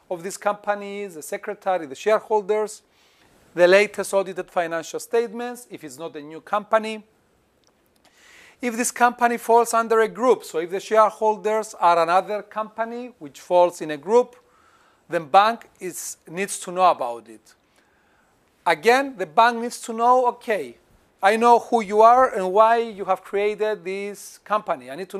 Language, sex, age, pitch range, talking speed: Greek, male, 40-59, 185-230 Hz, 160 wpm